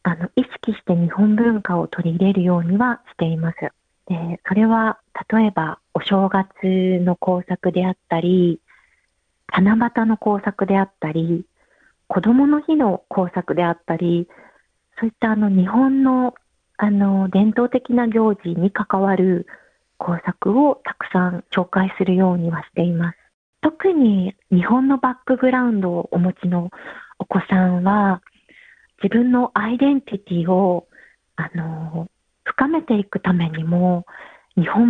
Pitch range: 180-230 Hz